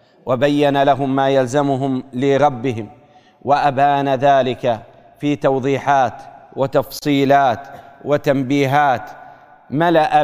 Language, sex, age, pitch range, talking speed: Arabic, male, 40-59, 145-160 Hz, 70 wpm